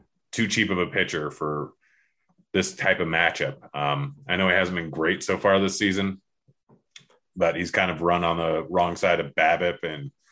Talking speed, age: 190 wpm, 30-49